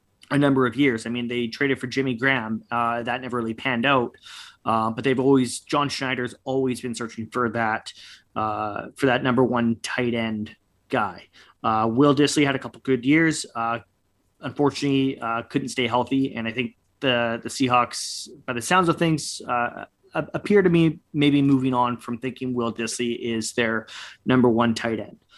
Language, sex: English, male